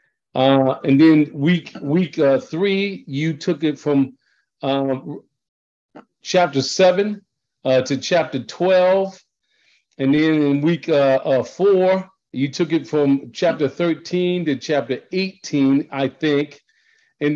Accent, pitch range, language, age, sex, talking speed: American, 140-180 Hz, English, 50-69, male, 130 wpm